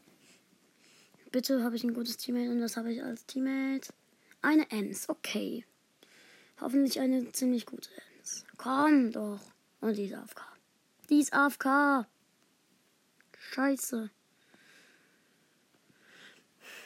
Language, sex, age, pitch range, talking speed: German, female, 20-39, 210-265 Hz, 105 wpm